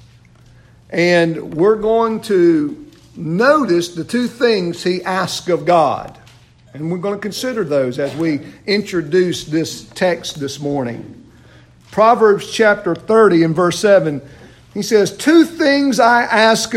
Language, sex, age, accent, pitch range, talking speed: English, male, 50-69, American, 170-235 Hz, 130 wpm